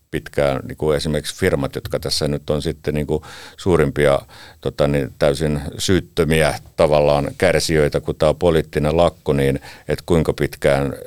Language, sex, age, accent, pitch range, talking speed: Finnish, male, 50-69, native, 70-80 Hz, 145 wpm